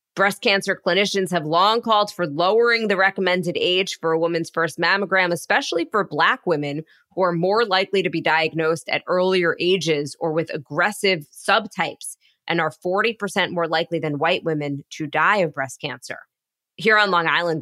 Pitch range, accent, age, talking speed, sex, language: 160-215 Hz, American, 20-39, 175 wpm, female, English